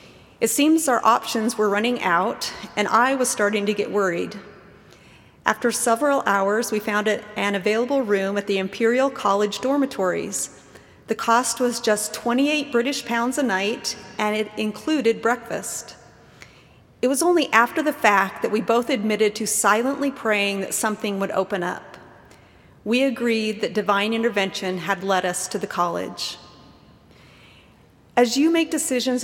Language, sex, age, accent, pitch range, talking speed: English, female, 40-59, American, 205-245 Hz, 150 wpm